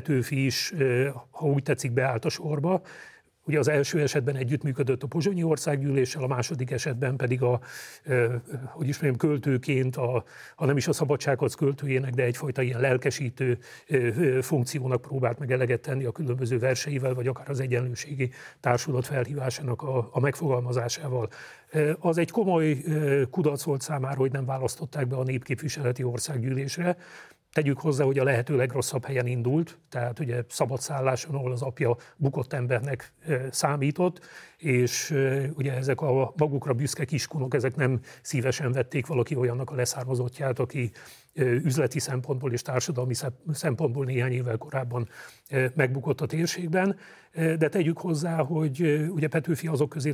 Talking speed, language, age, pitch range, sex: 140 wpm, Hungarian, 40-59, 125-150 Hz, male